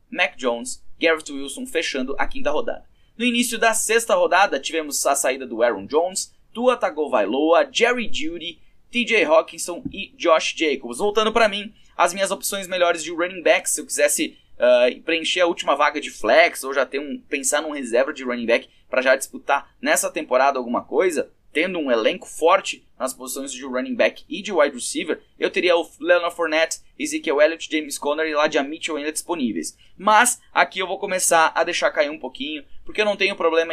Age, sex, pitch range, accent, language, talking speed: 20-39, male, 145-215 Hz, Brazilian, Portuguese, 190 wpm